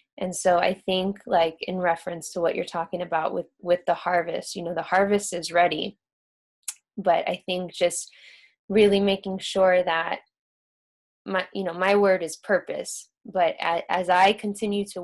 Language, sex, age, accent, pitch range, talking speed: English, female, 10-29, American, 170-195 Hz, 170 wpm